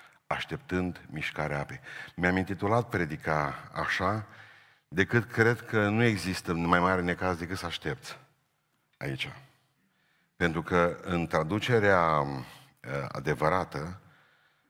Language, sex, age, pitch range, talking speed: Romanian, male, 50-69, 85-105 Hz, 100 wpm